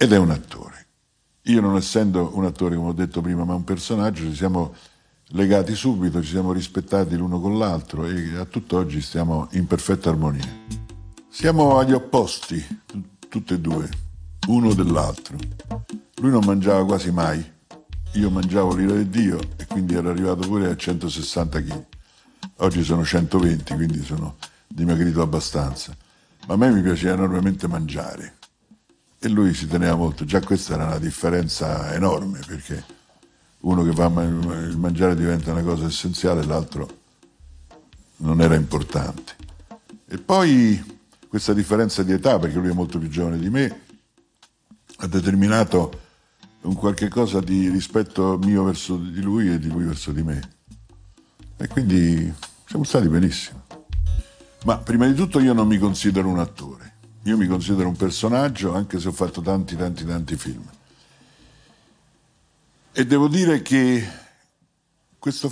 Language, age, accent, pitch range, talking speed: Italian, 50-69, native, 85-105 Hz, 150 wpm